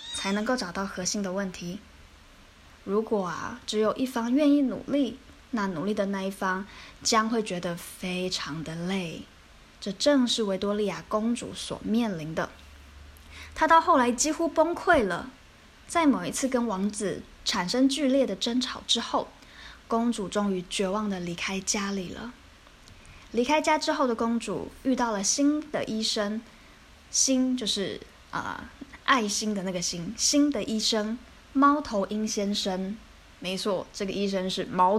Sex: female